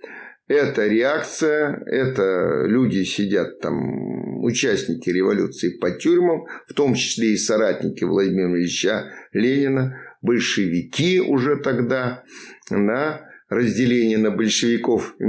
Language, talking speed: Russian, 100 wpm